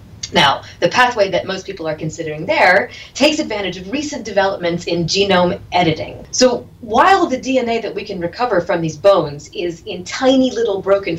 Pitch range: 160-225 Hz